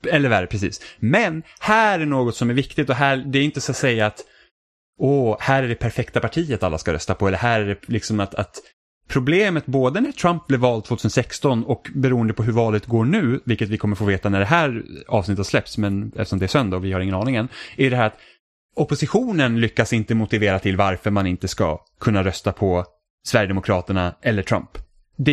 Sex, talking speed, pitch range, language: male, 215 wpm, 110-140 Hz, Swedish